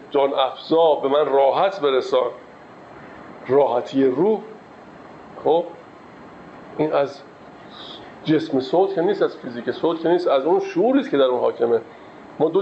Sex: male